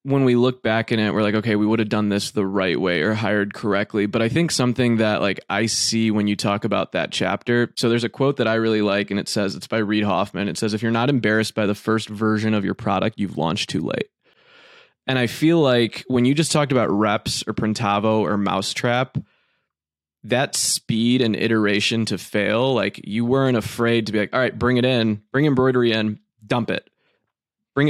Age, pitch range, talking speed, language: 20-39, 105-125 Hz, 225 wpm, English